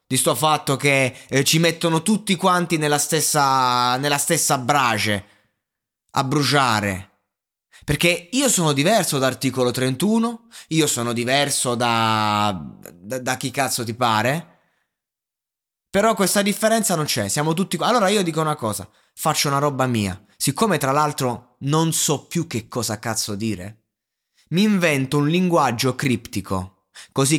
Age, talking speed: 20-39, 145 wpm